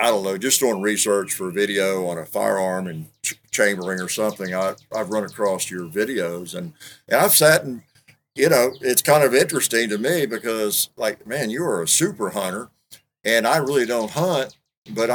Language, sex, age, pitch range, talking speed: English, male, 50-69, 95-125 Hz, 200 wpm